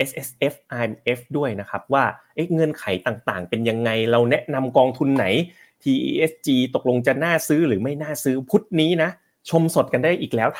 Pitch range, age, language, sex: 120-155 Hz, 30-49, Thai, male